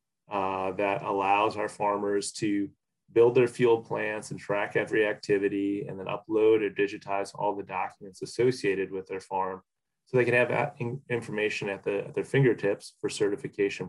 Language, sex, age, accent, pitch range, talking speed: English, male, 30-49, American, 100-125 Hz, 165 wpm